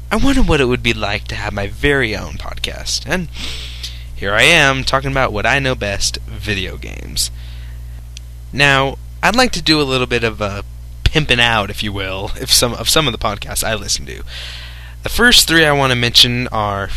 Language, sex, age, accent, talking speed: English, male, 20-39, American, 205 wpm